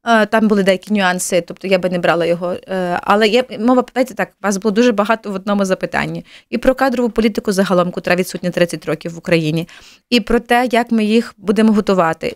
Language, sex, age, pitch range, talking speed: Ukrainian, female, 30-49, 180-220 Hz, 200 wpm